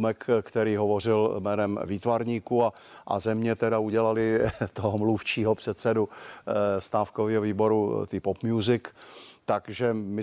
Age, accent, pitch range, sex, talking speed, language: 50-69, native, 105-115 Hz, male, 110 wpm, Czech